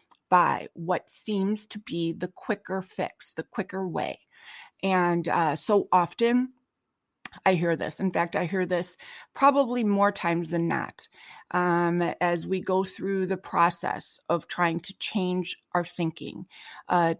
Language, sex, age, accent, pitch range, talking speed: English, female, 30-49, American, 175-205 Hz, 145 wpm